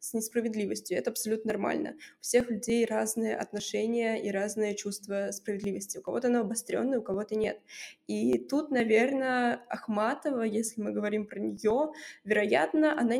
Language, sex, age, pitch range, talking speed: Russian, female, 20-39, 215-255 Hz, 145 wpm